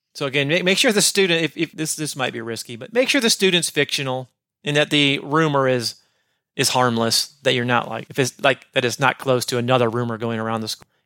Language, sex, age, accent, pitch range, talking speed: English, male, 30-49, American, 115-135 Hz, 240 wpm